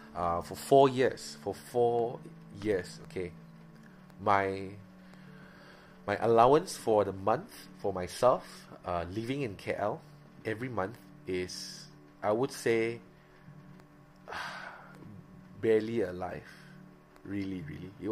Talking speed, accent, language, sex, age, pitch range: 105 wpm, Malaysian, English, male, 20-39, 95-120 Hz